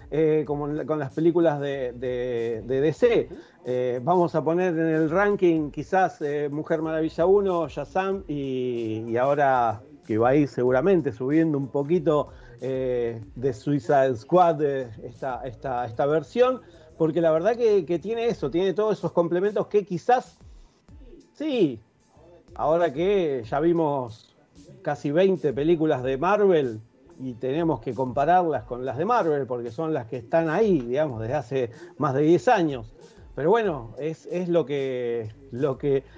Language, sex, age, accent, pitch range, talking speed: English, male, 40-59, Argentinian, 135-175 Hz, 155 wpm